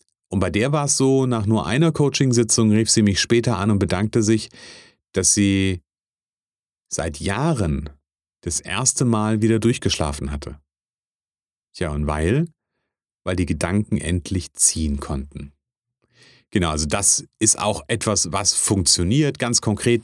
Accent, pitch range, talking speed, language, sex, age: German, 85-115 Hz, 140 wpm, German, male, 30-49